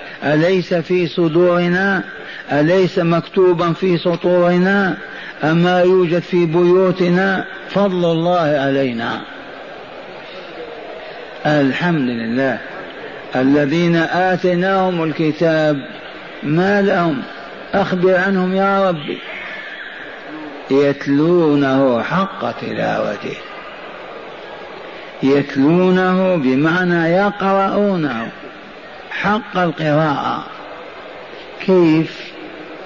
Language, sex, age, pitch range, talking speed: Arabic, male, 50-69, 140-180 Hz, 60 wpm